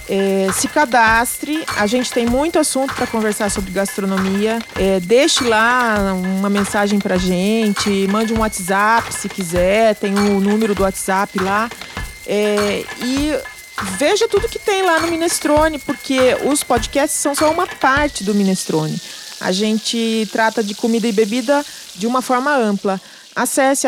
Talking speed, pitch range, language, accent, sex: 155 wpm, 200-260 Hz, Portuguese, Brazilian, female